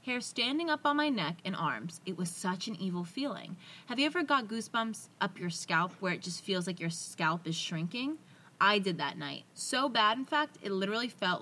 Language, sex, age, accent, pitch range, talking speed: English, female, 20-39, American, 175-230 Hz, 220 wpm